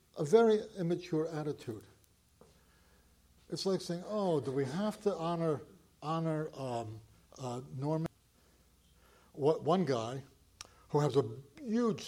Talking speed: 115 wpm